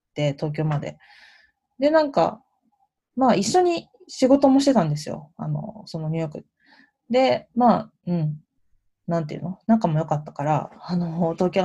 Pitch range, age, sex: 155-225 Hz, 20-39, female